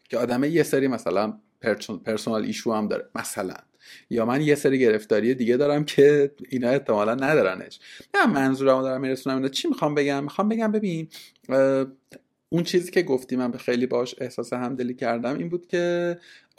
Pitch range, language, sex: 125-170 Hz, Persian, male